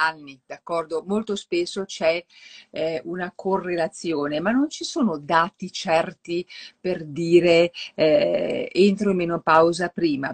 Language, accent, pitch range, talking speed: Italian, native, 160-215 Hz, 120 wpm